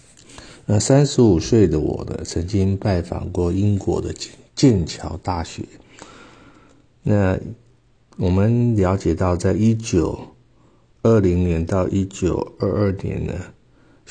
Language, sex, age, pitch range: Chinese, male, 50-69, 90-110 Hz